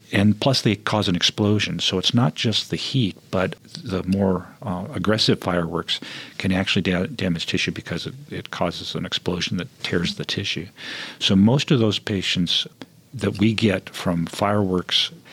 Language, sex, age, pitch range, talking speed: English, male, 50-69, 95-115 Hz, 165 wpm